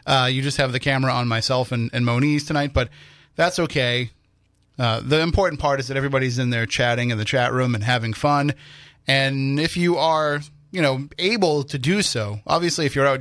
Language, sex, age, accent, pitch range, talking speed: English, male, 30-49, American, 125-150 Hz, 210 wpm